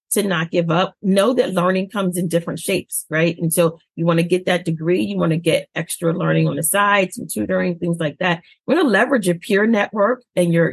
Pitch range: 165-190 Hz